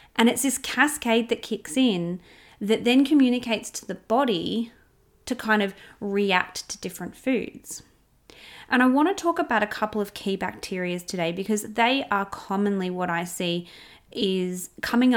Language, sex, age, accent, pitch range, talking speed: English, female, 30-49, Australian, 180-235 Hz, 160 wpm